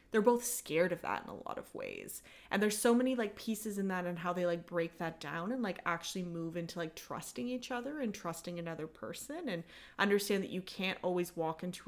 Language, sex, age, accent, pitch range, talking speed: English, female, 20-39, American, 165-200 Hz, 230 wpm